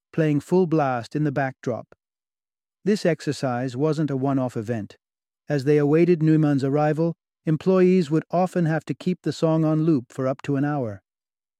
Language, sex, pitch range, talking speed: English, male, 130-160 Hz, 165 wpm